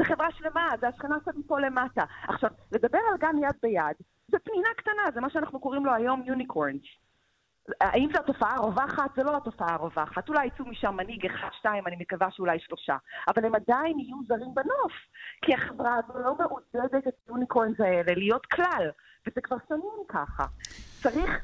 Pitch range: 195-275 Hz